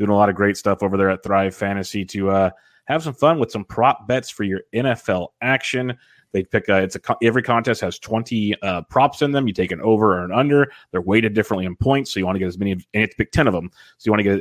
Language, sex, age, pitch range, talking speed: English, male, 30-49, 95-120 Hz, 275 wpm